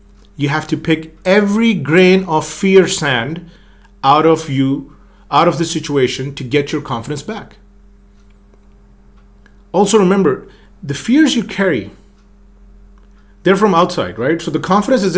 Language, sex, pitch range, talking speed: English, male, 110-185 Hz, 140 wpm